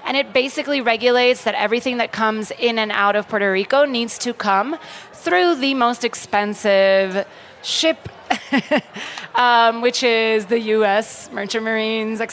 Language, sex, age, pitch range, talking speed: English, female, 30-49, 215-245 Hz, 145 wpm